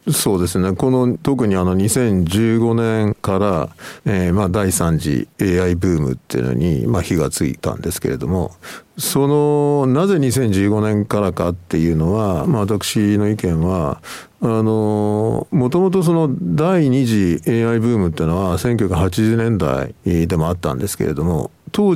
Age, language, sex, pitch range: 50-69, Japanese, male, 90-125 Hz